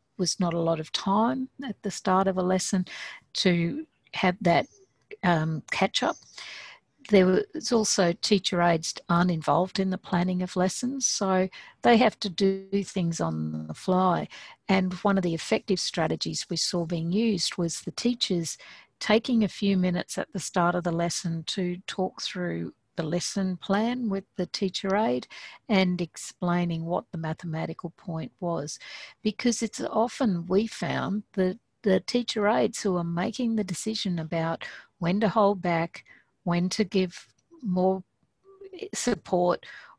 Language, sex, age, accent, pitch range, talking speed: English, female, 60-79, Australian, 175-220 Hz, 155 wpm